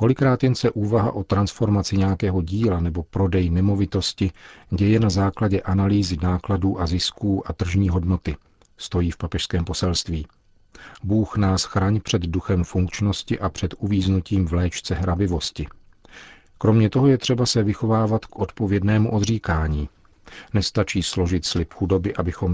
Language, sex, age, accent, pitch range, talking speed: Czech, male, 40-59, native, 90-100 Hz, 135 wpm